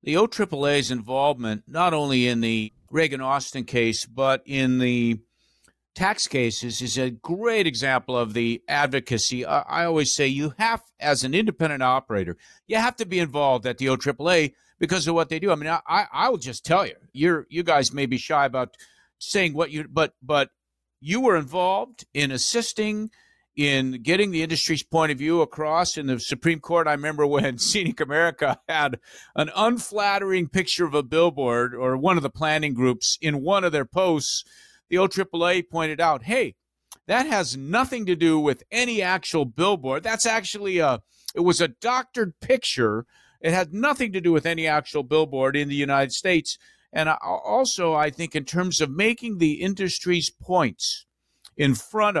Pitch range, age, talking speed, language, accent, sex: 135-185 Hz, 50-69, 180 wpm, English, American, male